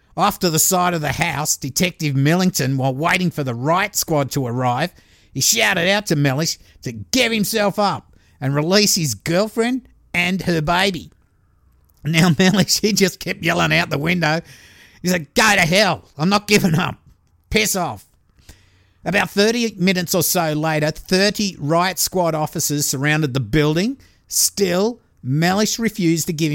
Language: English